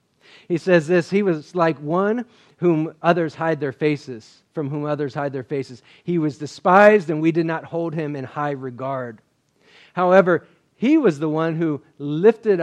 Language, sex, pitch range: English, male, 130-160 Hz